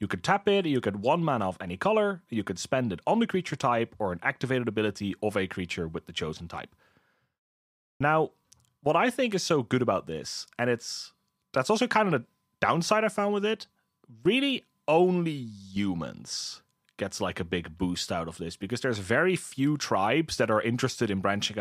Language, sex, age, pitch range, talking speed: English, male, 30-49, 95-150 Hz, 200 wpm